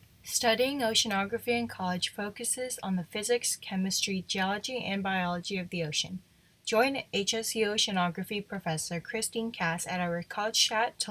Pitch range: 175-225 Hz